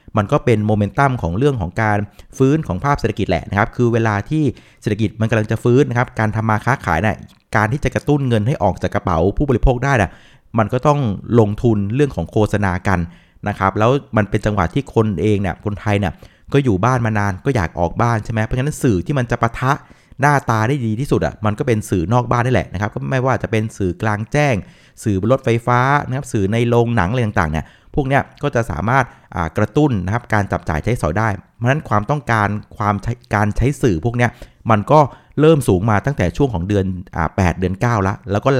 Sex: male